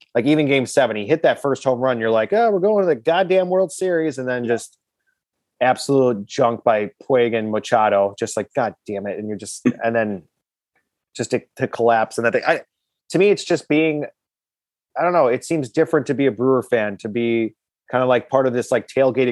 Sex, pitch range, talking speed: male, 110-135 Hz, 225 wpm